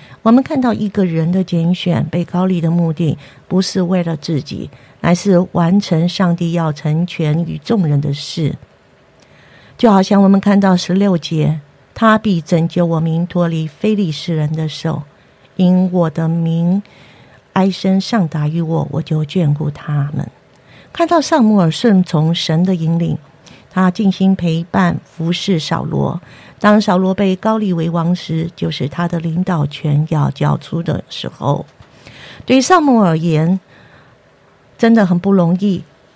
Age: 50-69